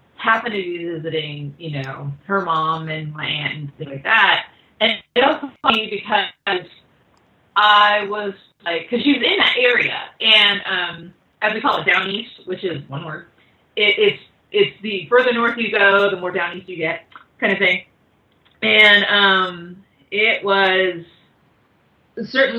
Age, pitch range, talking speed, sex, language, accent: 30-49, 175-225 Hz, 165 wpm, female, English, American